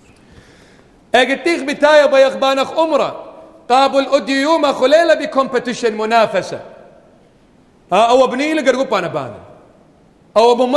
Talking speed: 55 wpm